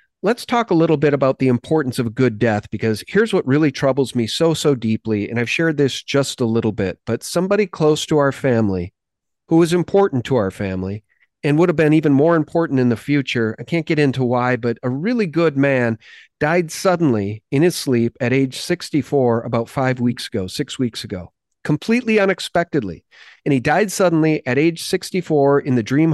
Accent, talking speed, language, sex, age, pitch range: American, 200 wpm, English, male, 40-59, 120-160 Hz